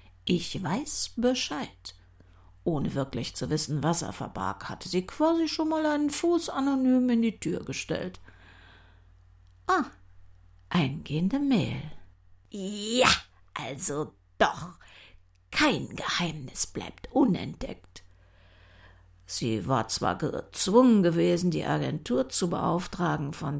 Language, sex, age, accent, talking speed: German, female, 60-79, German, 105 wpm